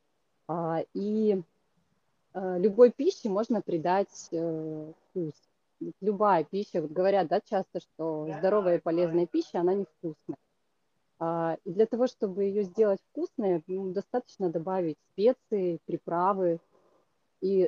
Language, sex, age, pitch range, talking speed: Russian, female, 30-49, 170-205 Hz, 100 wpm